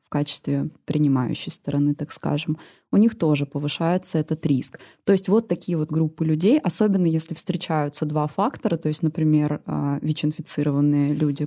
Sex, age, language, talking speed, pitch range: female, 20-39, Russian, 150 wpm, 150-185 Hz